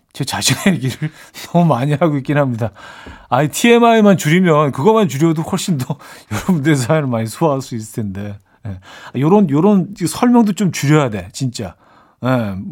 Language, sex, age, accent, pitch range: Korean, male, 40-59, native, 115-165 Hz